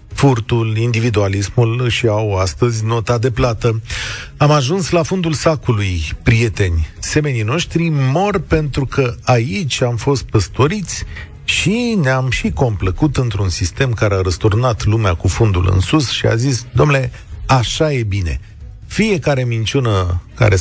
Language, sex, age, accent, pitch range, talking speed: Romanian, male, 40-59, native, 105-140 Hz, 135 wpm